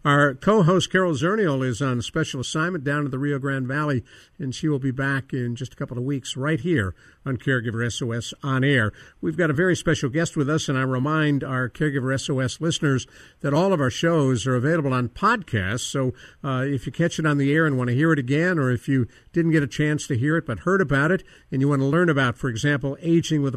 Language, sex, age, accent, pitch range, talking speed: English, male, 50-69, American, 130-160 Hz, 245 wpm